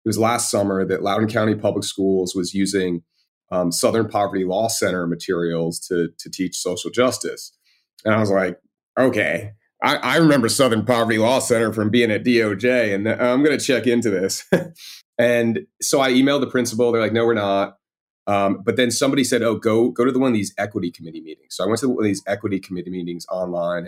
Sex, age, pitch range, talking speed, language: male, 30-49, 95-115 Hz, 210 wpm, English